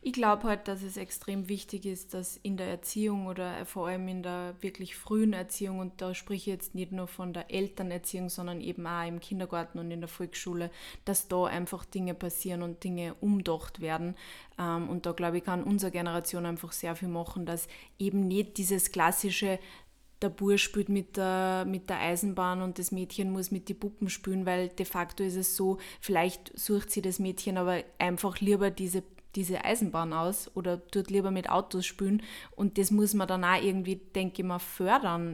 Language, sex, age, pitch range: German, female, 20-39, 180-200 Hz